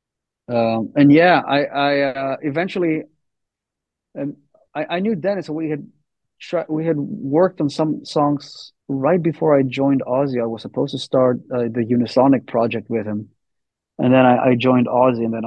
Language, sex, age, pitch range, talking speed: English, male, 30-49, 115-140 Hz, 180 wpm